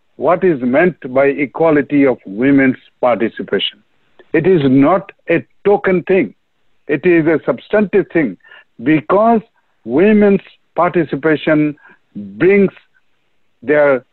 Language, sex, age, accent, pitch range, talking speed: English, male, 60-79, Indian, 140-190 Hz, 100 wpm